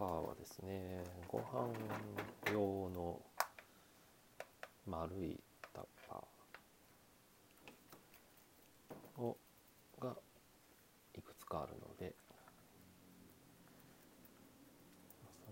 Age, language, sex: 40-59, Japanese, male